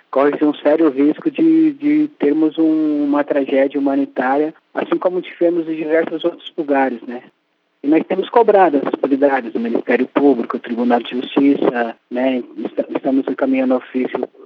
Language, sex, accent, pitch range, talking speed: Portuguese, male, Brazilian, 140-160 Hz, 150 wpm